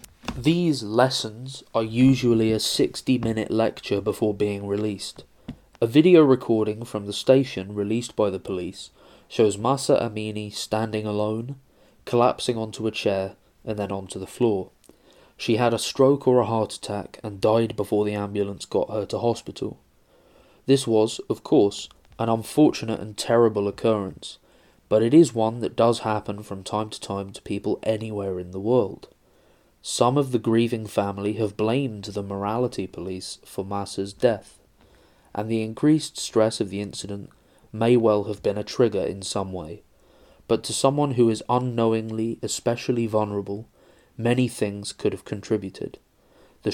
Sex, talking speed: male, 155 wpm